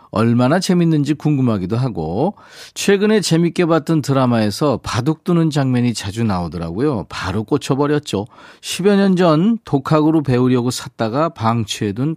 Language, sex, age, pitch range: Korean, male, 40-59, 115-165 Hz